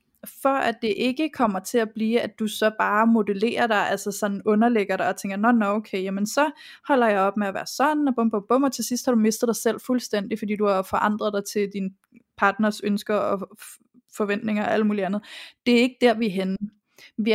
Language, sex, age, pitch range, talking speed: Danish, female, 20-39, 210-245 Hz, 235 wpm